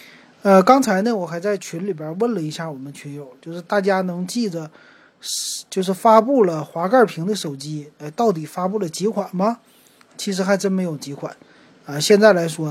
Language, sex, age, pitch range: Chinese, male, 30-49, 160-215 Hz